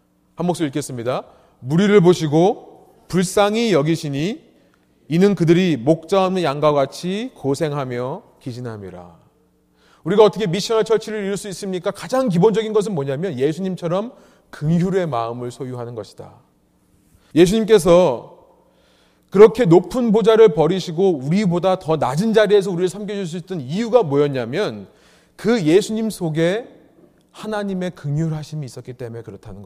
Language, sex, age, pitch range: Korean, male, 30-49, 140-205 Hz